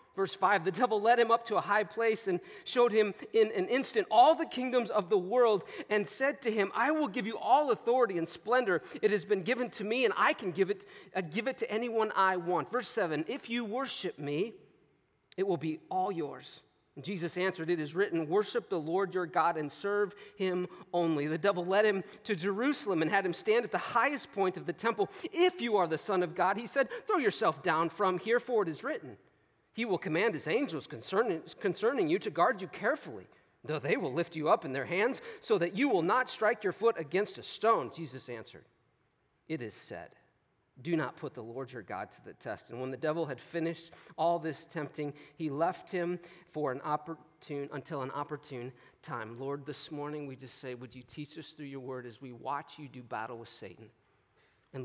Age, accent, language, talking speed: 40-59, American, English, 220 wpm